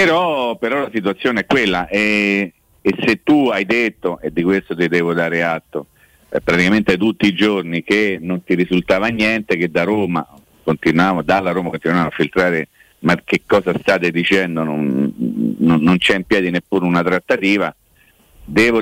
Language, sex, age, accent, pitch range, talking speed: Italian, male, 50-69, native, 95-125 Hz, 165 wpm